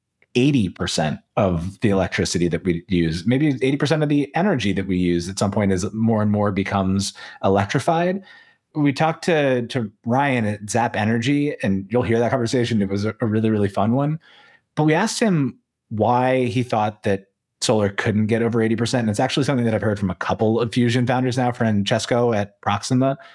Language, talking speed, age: English, 190 wpm, 30-49